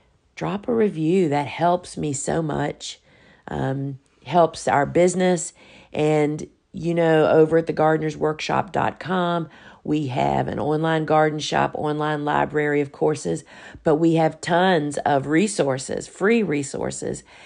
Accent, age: American, 50-69